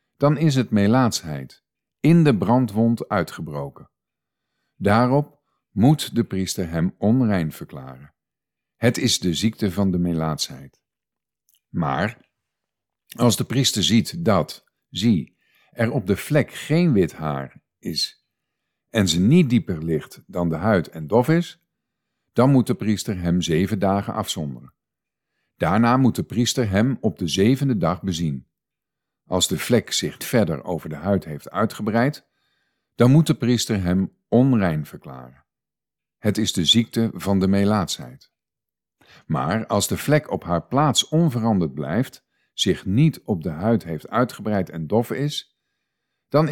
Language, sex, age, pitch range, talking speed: Dutch, male, 50-69, 90-125 Hz, 140 wpm